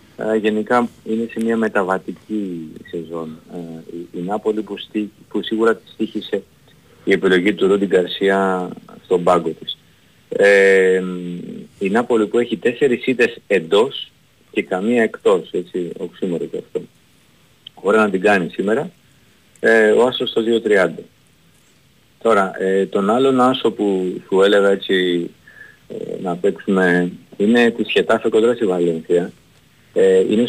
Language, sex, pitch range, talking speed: Greek, male, 95-115 Hz, 130 wpm